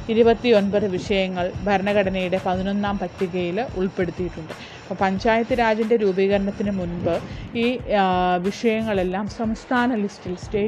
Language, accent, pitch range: English, Indian, 180-215 Hz